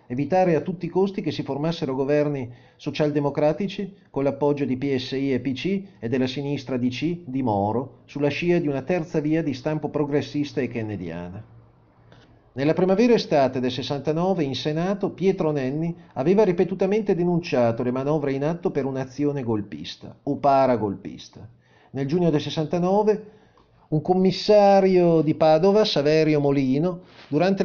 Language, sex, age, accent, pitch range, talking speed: Italian, male, 40-59, native, 135-180 Hz, 140 wpm